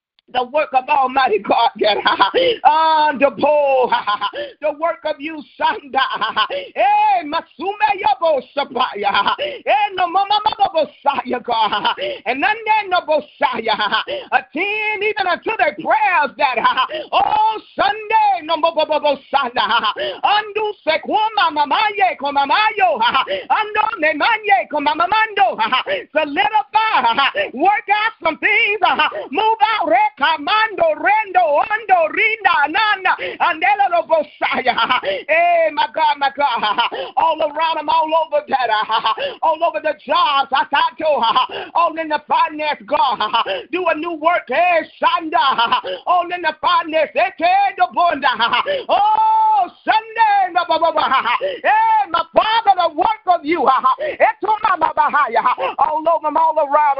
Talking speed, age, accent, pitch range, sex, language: 120 wpm, 40-59, American, 300-420 Hz, male, English